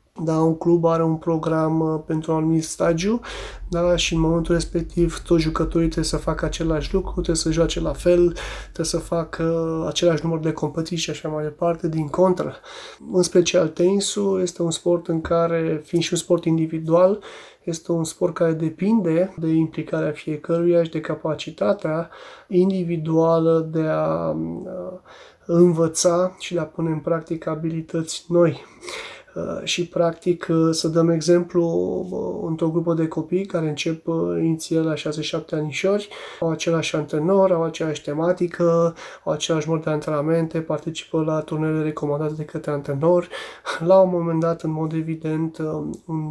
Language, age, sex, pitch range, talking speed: Romanian, 20-39, male, 160-170 Hz, 150 wpm